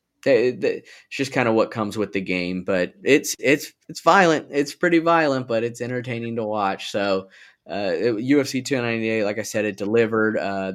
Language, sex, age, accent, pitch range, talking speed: English, male, 20-39, American, 105-135 Hz, 180 wpm